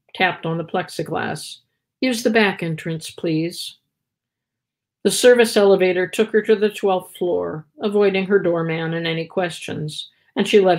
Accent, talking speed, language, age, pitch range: American, 150 wpm, English, 50-69, 165-205 Hz